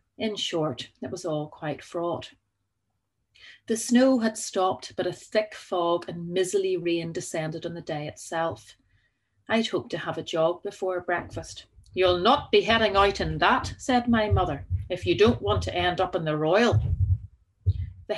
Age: 40-59